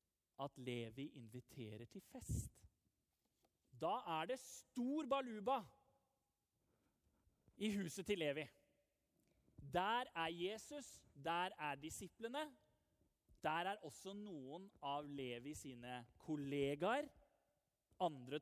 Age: 30-49